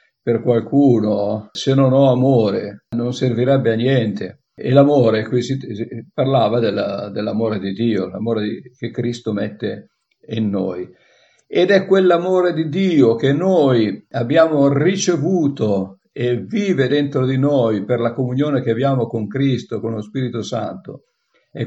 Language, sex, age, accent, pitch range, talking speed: Italian, male, 50-69, native, 115-140 Hz, 145 wpm